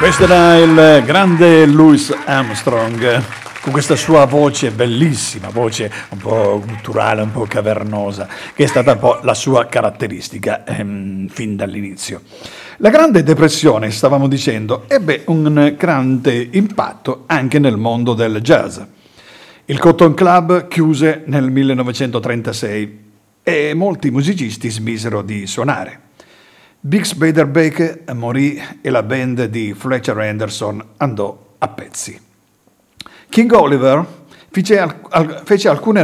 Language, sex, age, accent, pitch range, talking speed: Italian, male, 50-69, native, 110-160 Hz, 125 wpm